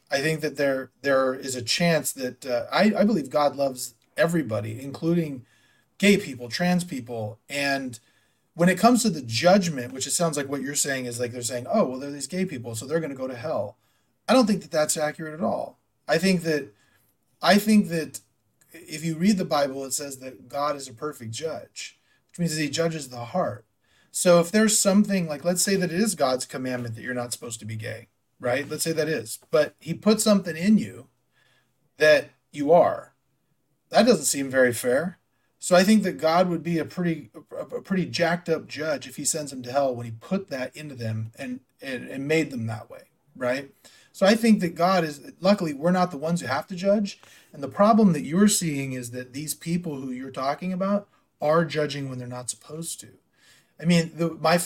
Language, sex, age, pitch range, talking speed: English, male, 30-49, 130-175 Hz, 220 wpm